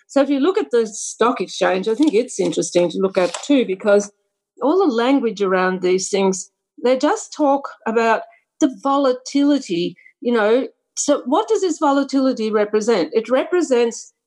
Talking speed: 165 wpm